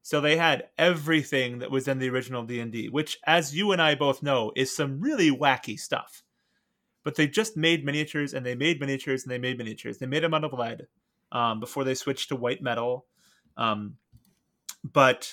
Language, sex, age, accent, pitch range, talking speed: English, male, 30-49, American, 125-160 Hz, 195 wpm